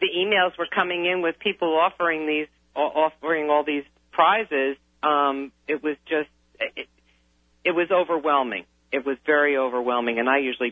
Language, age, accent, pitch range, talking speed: English, 50-69, American, 115-145 Hz, 155 wpm